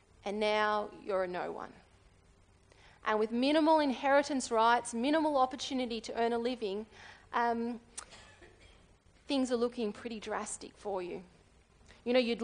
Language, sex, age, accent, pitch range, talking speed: English, female, 30-49, Australian, 215-275 Hz, 130 wpm